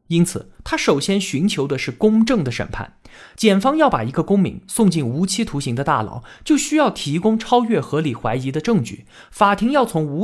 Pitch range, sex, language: 135-220 Hz, male, Chinese